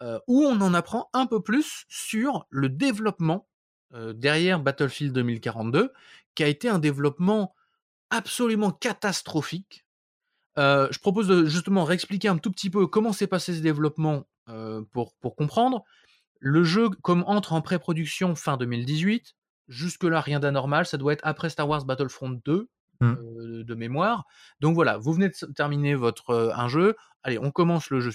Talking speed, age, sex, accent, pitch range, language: 165 wpm, 20-39, male, French, 140-195 Hz, French